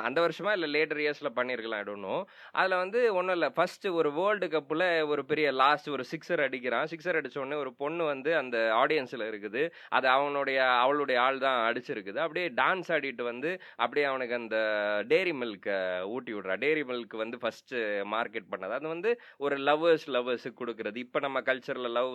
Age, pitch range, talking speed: 20-39, 115-150 Hz, 165 wpm